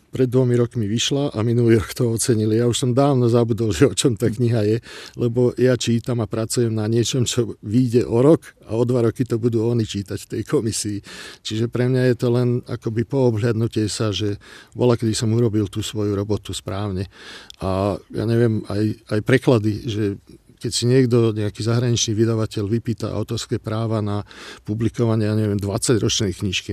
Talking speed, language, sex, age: 185 wpm, Czech, male, 50-69